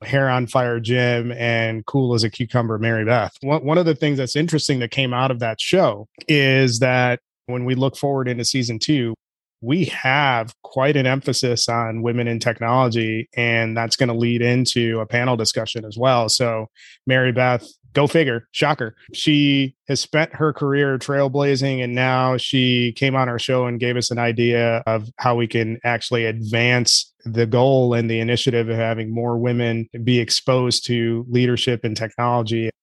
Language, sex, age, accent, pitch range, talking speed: English, male, 30-49, American, 120-135 Hz, 175 wpm